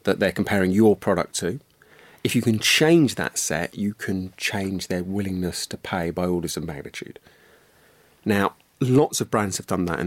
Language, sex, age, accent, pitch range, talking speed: English, male, 30-49, British, 85-110 Hz, 185 wpm